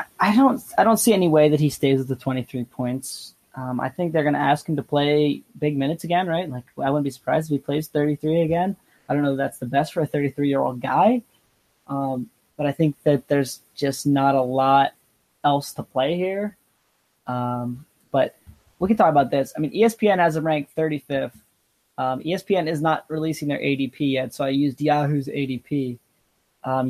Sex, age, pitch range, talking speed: male, 20-39, 140-175 Hz, 205 wpm